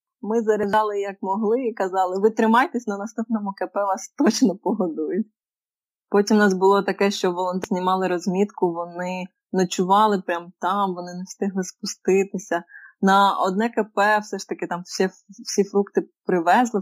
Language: Ukrainian